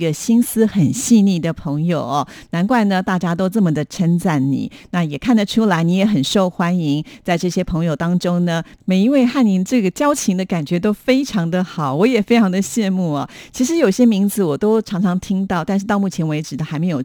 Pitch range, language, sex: 170-220 Hz, Chinese, female